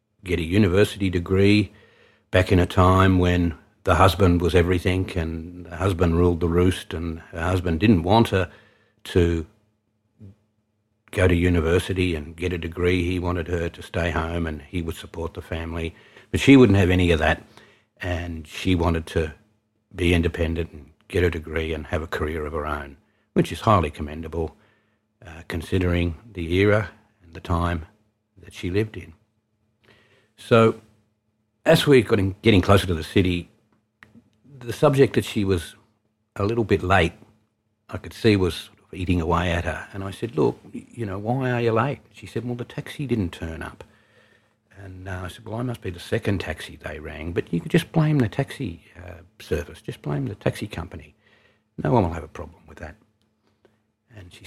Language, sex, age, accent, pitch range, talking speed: English, male, 60-79, Australian, 85-110 Hz, 180 wpm